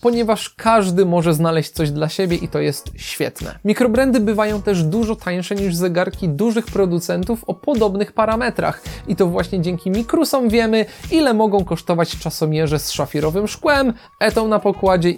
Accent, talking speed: native, 155 wpm